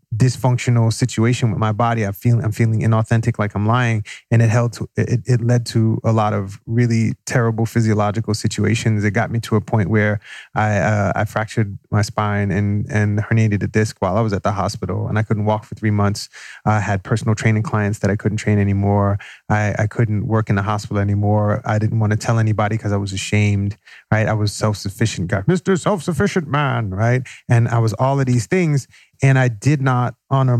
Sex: male